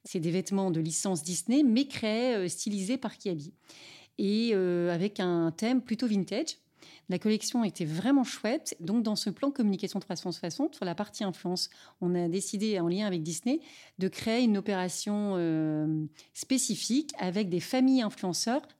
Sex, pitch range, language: female, 175-225 Hz, French